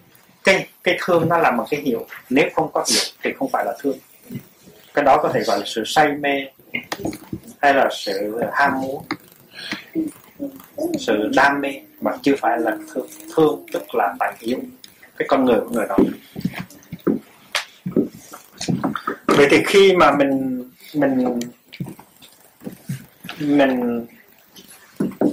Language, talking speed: Vietnamese, 135 wpm